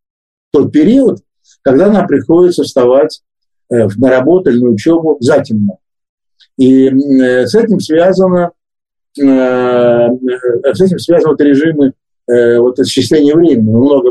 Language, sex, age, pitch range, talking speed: Russian, male, 50-69, 125-160 Hz, 105 wpm